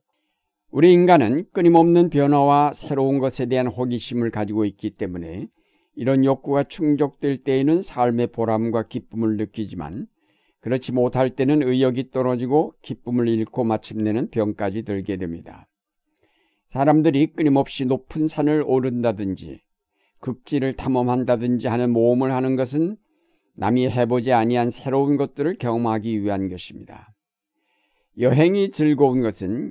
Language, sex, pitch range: Korean, male, 115-150 Hz